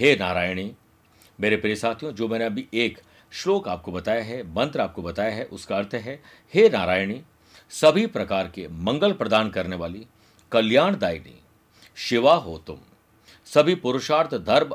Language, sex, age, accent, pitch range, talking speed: Hindi, male, 50-69, native, 105-150 Hz, 125 wpm